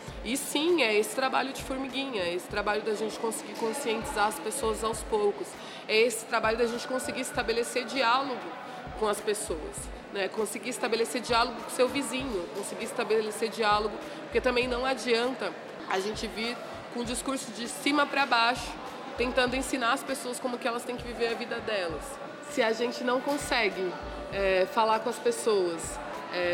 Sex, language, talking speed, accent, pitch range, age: female, Portuguese, 180 wpm, Brazilian, 205-255 Hz, 20-39